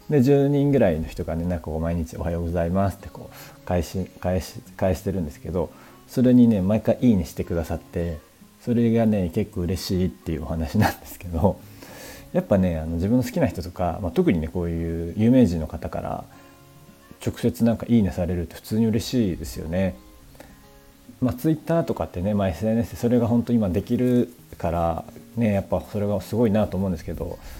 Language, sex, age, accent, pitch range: Japanese, male, 40-59, native, 85-110 Hz